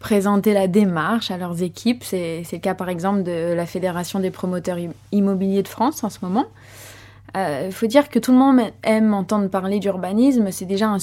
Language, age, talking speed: French, 20-39, 205 wpm